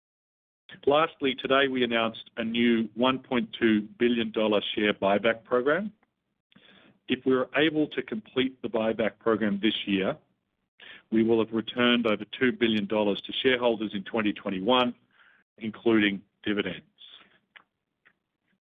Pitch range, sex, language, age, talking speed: 110-125 Hz, male, English, 50-69, 110 wpm